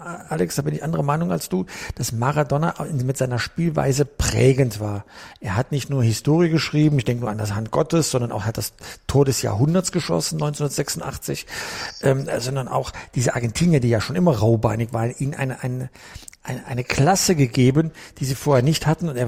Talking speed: 190 wpm